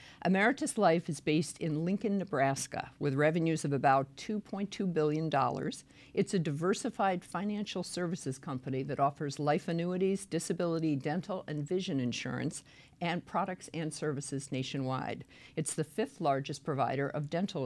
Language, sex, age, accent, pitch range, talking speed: English, female, 50-69, American, 140-180 Hz, 135 wpm